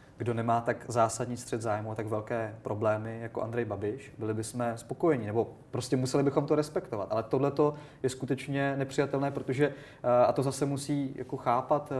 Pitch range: 115-130 Hz